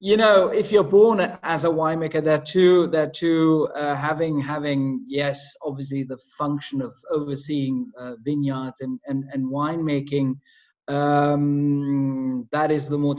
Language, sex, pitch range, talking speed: English, male, 135-155 Hz, 145 wpm